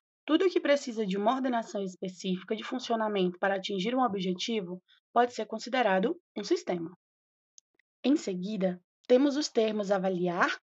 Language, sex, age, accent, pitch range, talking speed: Portuguese, female, 20-39, Brazilian, 195-255 Hz, 135 wpm